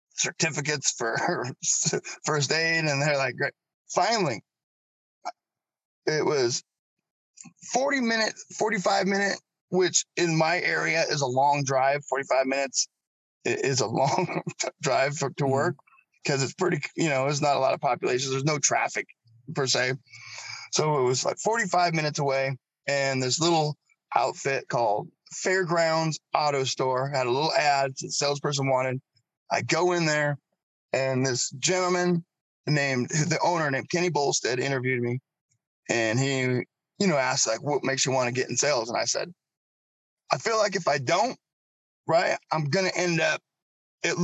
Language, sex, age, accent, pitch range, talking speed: English, male, 20-39, American, 135-170 Hz, 155 wpm